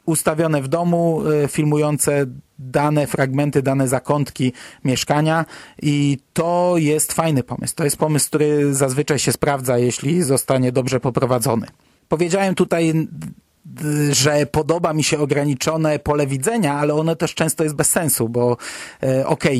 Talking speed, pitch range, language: 130 wpm, 145-175 Hz, Polish